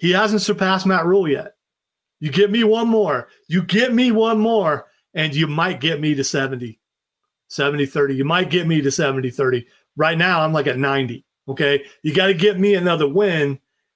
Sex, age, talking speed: male, 40-59, 200 wpm